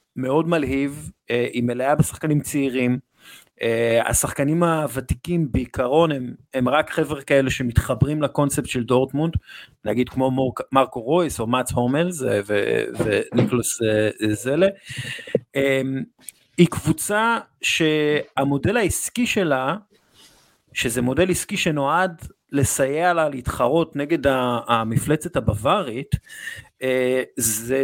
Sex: male